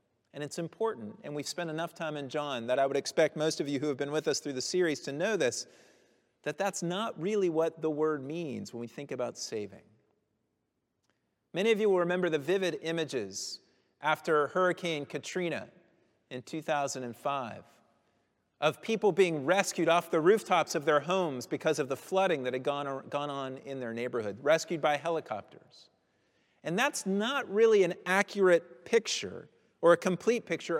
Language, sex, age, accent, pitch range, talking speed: English, male, 40-59, American, 150-200 Hz, 175 wpm